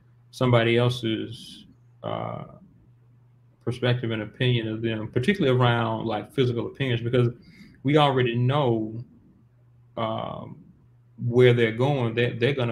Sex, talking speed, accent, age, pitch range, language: male, 115 wpm, American, 30-49, 115-120 Hz, English